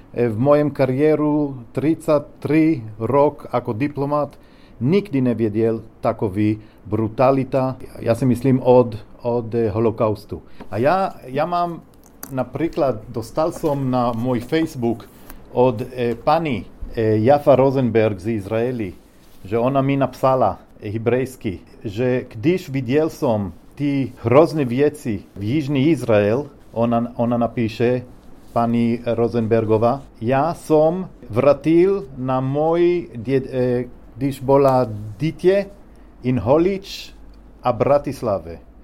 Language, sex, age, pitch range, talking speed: Slovak, male, 40-59, 120-155 Hz, 110 wpm